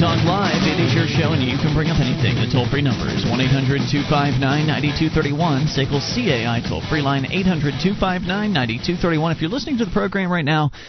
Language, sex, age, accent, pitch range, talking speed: English, male, 30-49, American, 130-160 Hz, 160 wpm